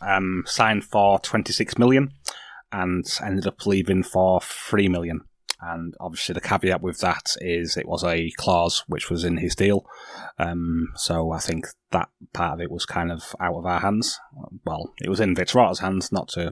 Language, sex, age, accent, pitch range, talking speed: English, male, 20-39, British, 90-100 Hz, 185 wpm